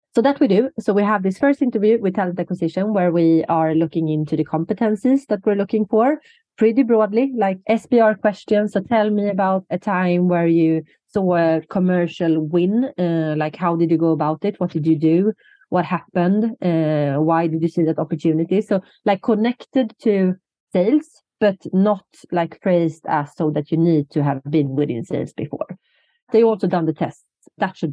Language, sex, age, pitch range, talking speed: English, female, 30-49, 160-210 Hz, 190 wpm